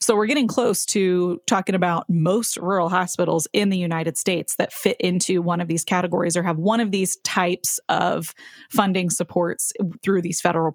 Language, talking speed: English, 185 wpm